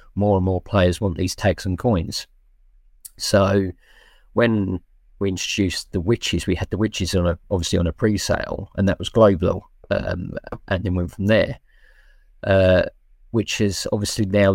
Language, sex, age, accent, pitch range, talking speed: English, male, 40-59, British, 90-105 Hz, 165 wpm